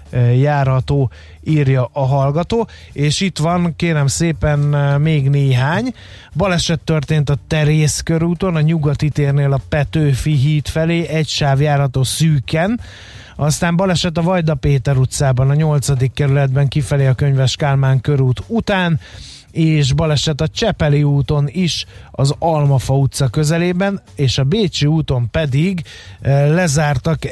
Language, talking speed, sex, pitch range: Hungarian, 125 wpm, male, 130-155 Hz